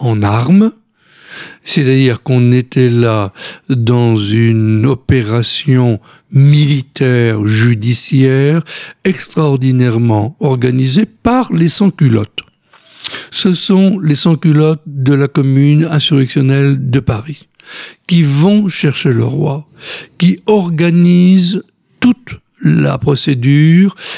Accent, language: French, French